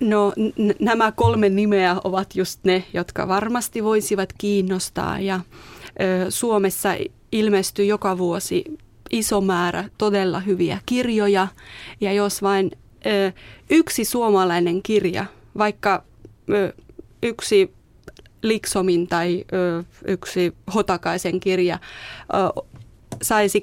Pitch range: 185-215 Hz